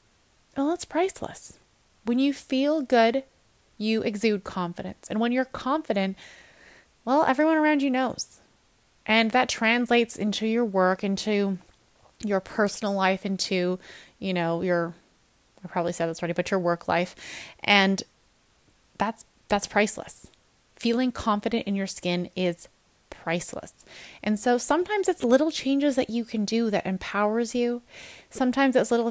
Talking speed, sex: 140 wpm, female